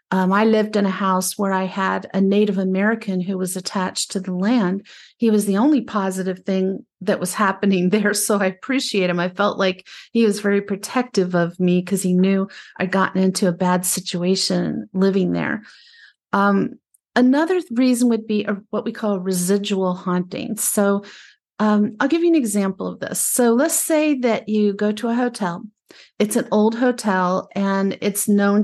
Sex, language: female, English